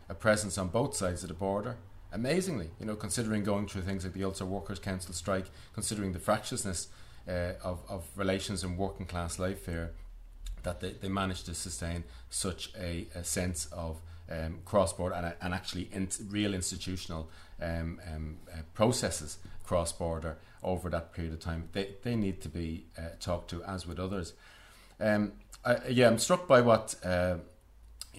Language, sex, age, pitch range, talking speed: English, male, 30-49, 85-100 Hz, 175 wpm